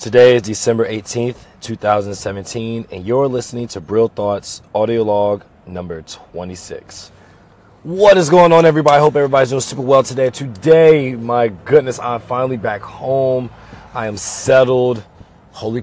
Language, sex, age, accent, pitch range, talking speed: English, male, 30-49, American, 105-130 Hz, 155 wpm